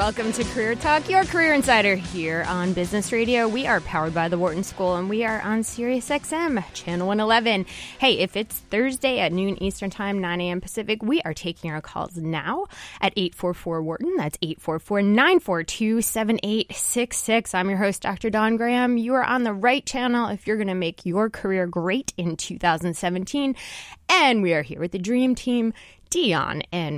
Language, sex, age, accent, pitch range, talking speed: English, female, 20-39, American, 175-235 Hz, 175 wpm